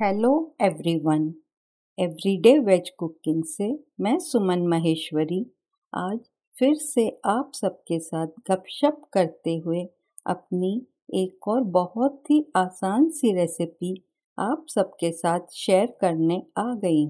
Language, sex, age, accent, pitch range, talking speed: Hindi, female, 50-69, native, 175-245 Hz, 115 wpm